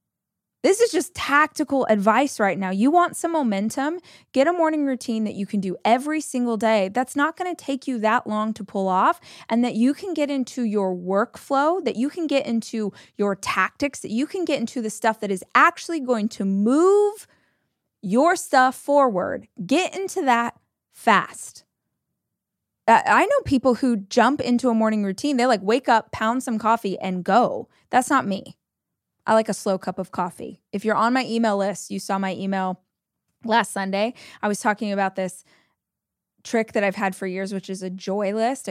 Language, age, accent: English, 20-39, American